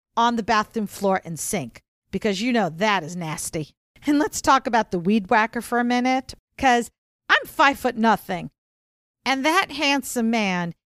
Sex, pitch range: female, 205-275 Hz